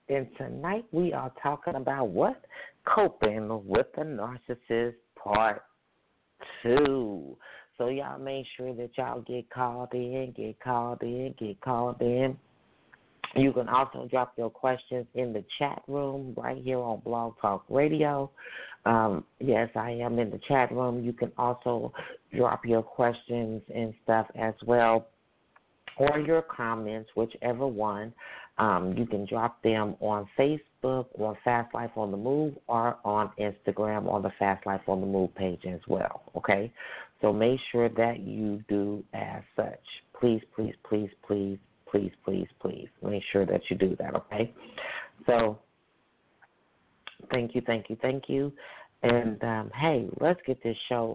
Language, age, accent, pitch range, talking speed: English, 40-59, American, 110-135 Hz, 155 wpm